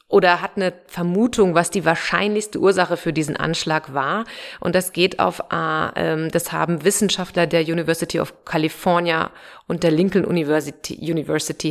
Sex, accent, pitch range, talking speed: female, German, 175-225 Hz, 145 wpm